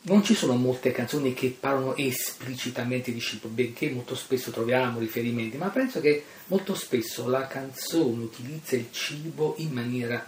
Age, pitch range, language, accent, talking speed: 40-59, 120-150 Hz, Italian, native, 160 wpm